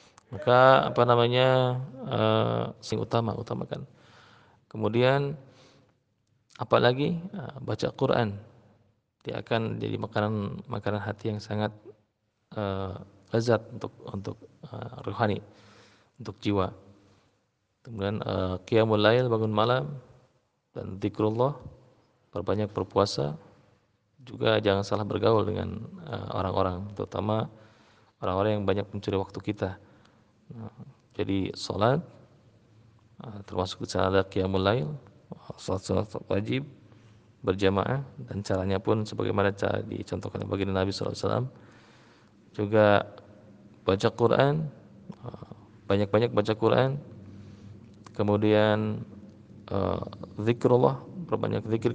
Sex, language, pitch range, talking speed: male, Malay, 100-120 Hz, 100 wpm